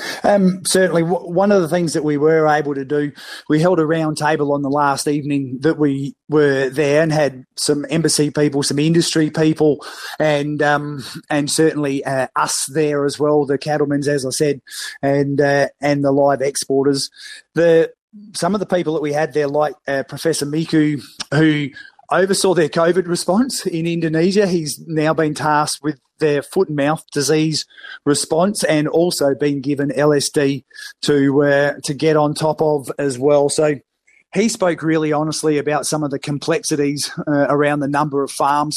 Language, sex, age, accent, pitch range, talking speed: English, male, 30-49, Australian, 140-160 Hz, 180 wpm